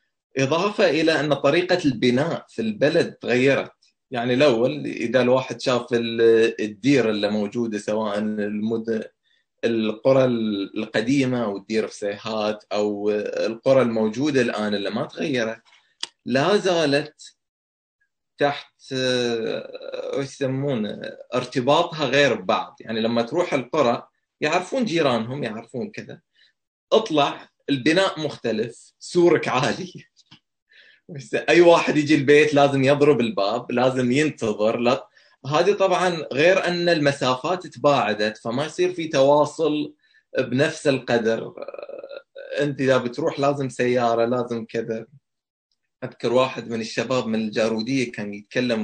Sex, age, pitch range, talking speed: male, 30-49, 115-145 Hz, 105 wpm